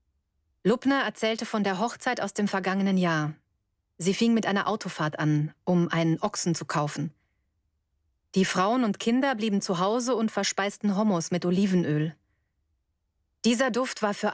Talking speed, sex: 150 wpm, female